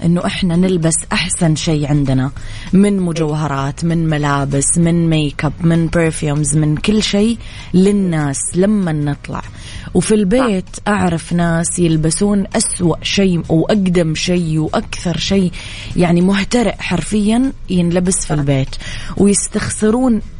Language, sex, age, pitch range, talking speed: English, female, 20-39, 155-195 Hz, 110 wpm